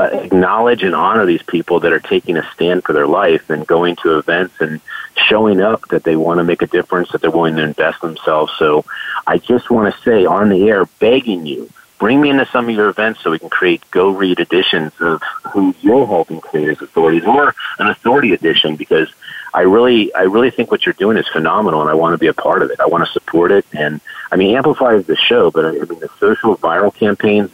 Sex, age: male, 50-69